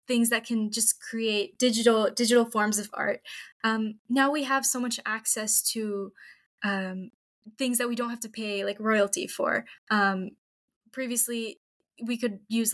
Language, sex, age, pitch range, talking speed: English, female, 10-29, 210-245 Hz, 160 wpm